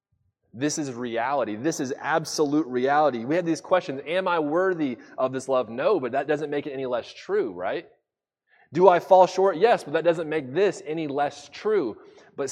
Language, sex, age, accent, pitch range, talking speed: English, male, 20-39, American, 130-180 Hz, 195 wpm